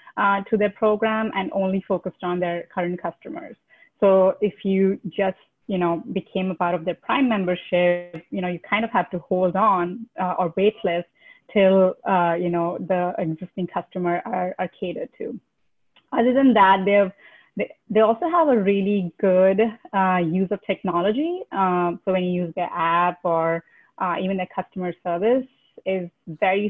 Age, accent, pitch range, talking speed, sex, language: 30-49, Indian, 180-210 Hz, 180 wpm, female, English